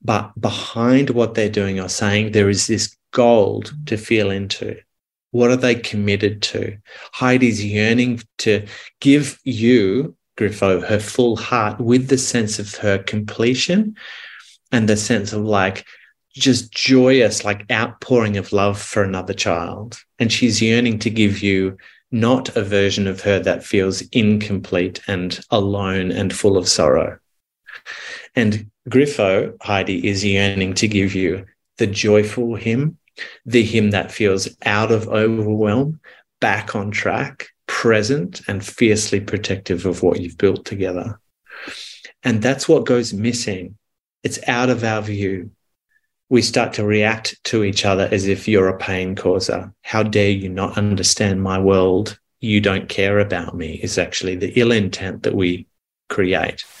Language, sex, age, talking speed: English, male, 30-49, 150 wpm